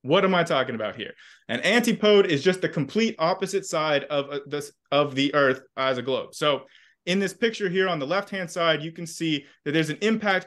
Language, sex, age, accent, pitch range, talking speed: English, male, 20-39, American, 145-200 Hz, 210 wpm